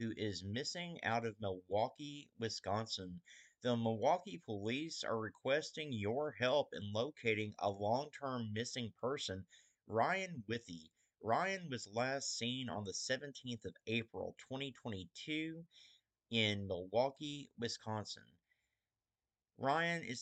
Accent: American